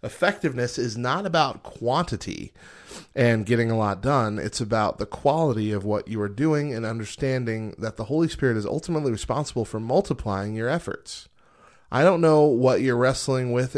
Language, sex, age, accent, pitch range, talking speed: English, male, 30-49, American, 100-125 Hz, 170 wpm